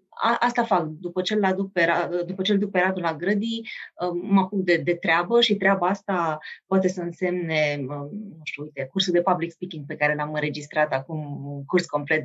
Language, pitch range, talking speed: Romanian, 165-225 Hz, 175 wpm